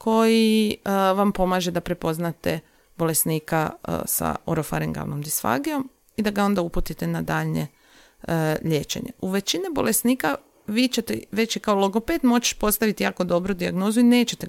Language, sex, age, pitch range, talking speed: Croatian, female, 30-49, 160-215 Hz, 145 wpm